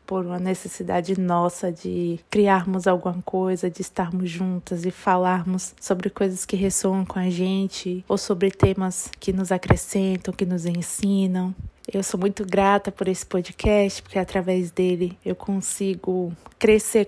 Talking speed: 150 wpm